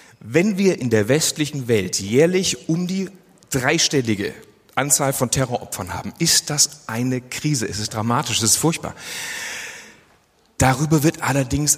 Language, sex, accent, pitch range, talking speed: German, male, German, 120-155 Hz, 140 wpm